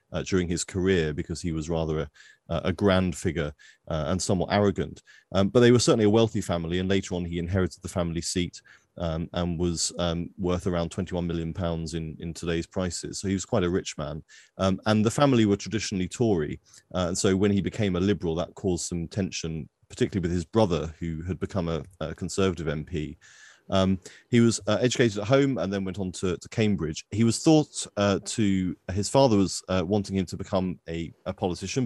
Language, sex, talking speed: English, male, 210 wpm